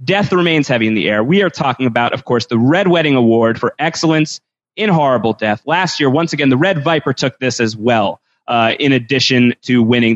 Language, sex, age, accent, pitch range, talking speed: English, male, 30-49, American, 120-165 Hz, 220 wpm